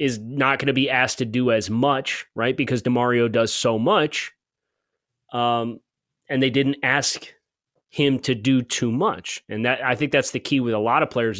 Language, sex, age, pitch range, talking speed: English, male, 30-49, 120-140 Hz, 200 wpm